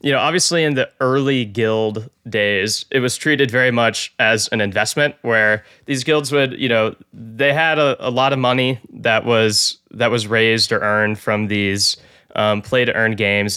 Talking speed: 180 wpm